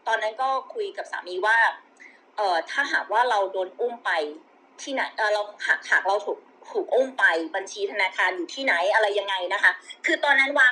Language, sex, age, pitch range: Thai, female, 30-49, 200-305 Hz